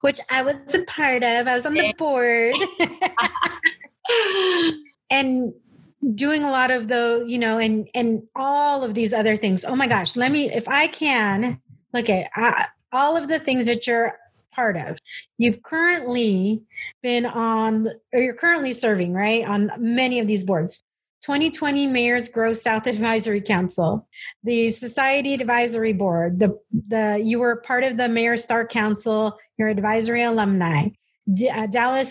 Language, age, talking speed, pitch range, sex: English, 30-49, 150 wpm, 215-255 Hz, female